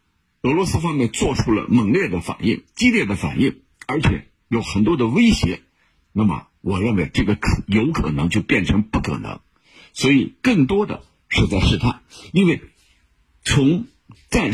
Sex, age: male, 50-69